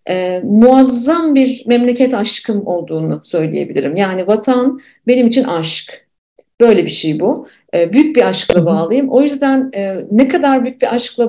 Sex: female